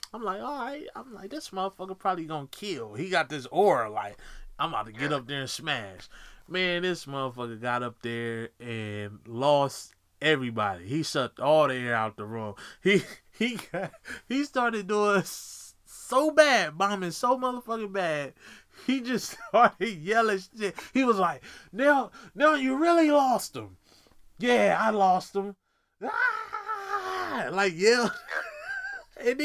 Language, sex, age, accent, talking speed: English, male, 20-39, American, 155 wpm